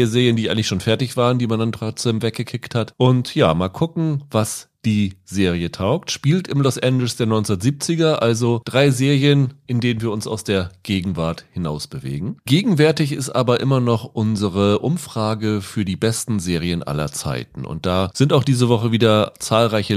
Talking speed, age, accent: 175 wpm, 30-49, German